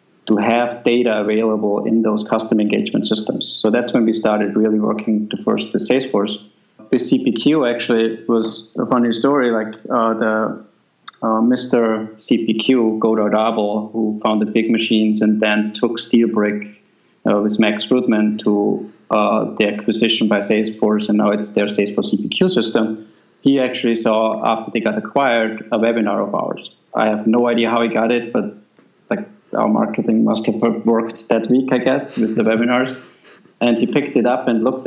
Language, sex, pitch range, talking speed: English, male, 105-115 Hz, 170 wpm